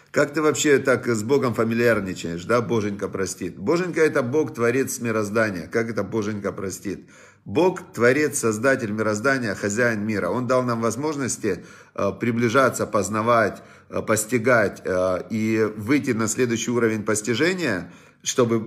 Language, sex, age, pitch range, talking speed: Russian, male, 50-69, 110-130 Hz, 125 wpm